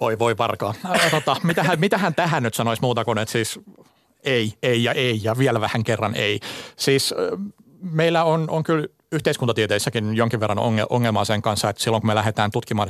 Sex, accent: male, native